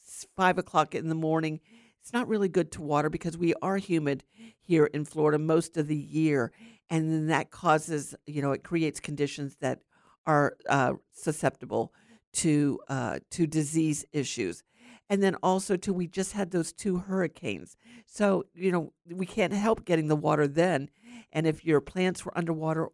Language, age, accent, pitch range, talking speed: English, 50-69, American, 155-195 Hz, 175 wpm